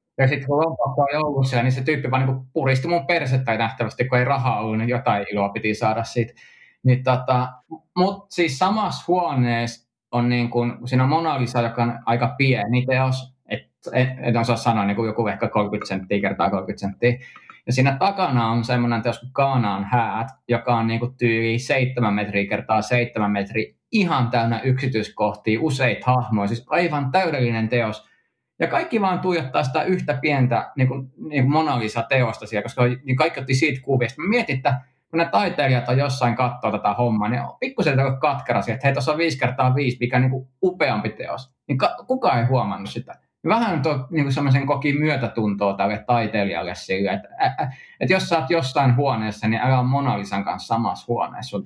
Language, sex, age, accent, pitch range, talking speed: Finnish, male, 20-39, native, 115-140 Hz, 185 wpm